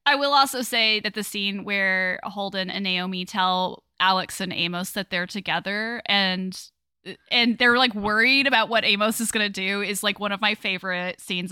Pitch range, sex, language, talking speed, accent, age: 200-250 Hz, female, English, 190 wpm, American, 10-29